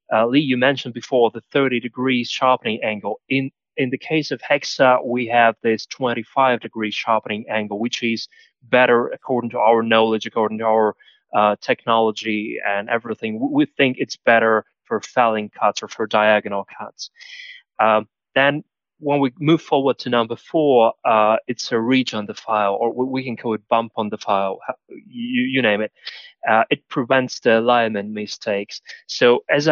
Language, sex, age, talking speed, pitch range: English, male, 20-39, 170 wpm, 115-135 Hz